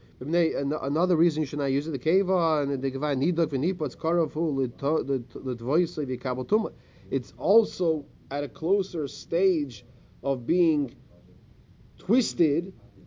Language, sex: English, male